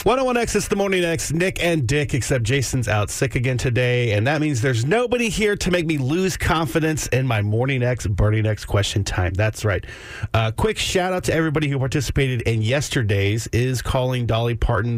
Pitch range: 110-145 Hz